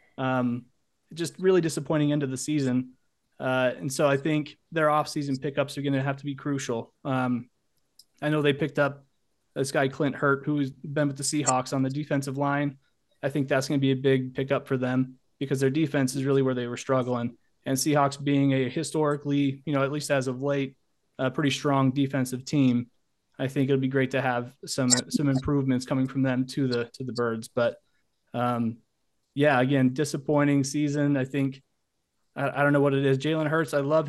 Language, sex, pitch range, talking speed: English, male, 130-150 Hz, 205 wpm